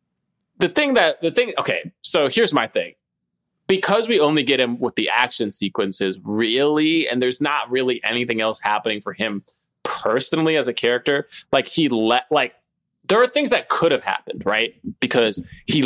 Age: 20-39